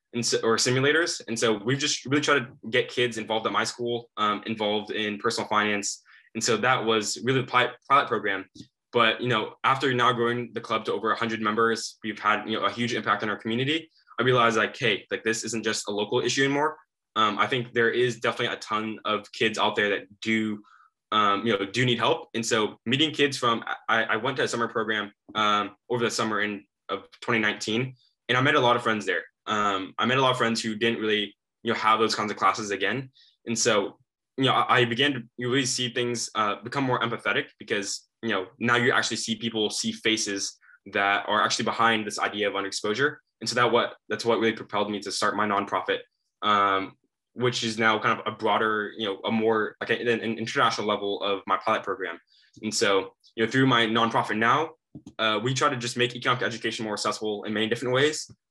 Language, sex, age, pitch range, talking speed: English, male, 10-29, 105-125 Hz, 220 wpm